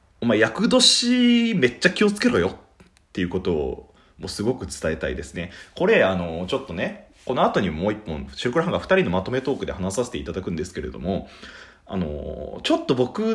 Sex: male